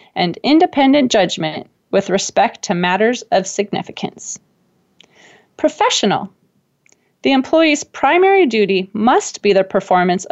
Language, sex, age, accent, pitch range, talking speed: English, female, 30-49, American, 190-295 Hz, 105 wpm